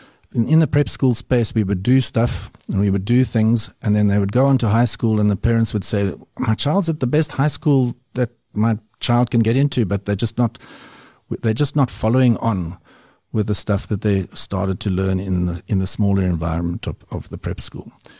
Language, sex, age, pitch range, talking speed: English, male, 50-69, 100-120 Hz, 230 wpm